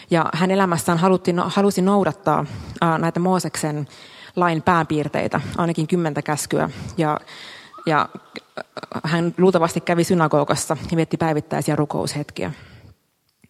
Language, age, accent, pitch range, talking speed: Finnish, 30-49, native, 155-185 Hz, 100 wpm